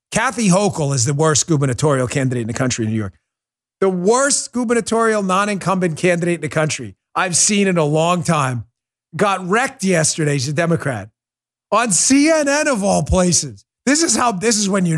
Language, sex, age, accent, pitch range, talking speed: English, male, 40-59, American, 105-160 Hz, 180 wpm